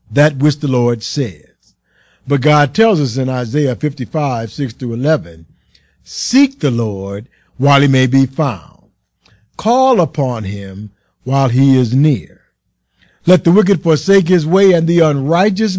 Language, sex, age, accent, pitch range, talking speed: English, male, 50-69, American, 125-180 Hz, 140 wpm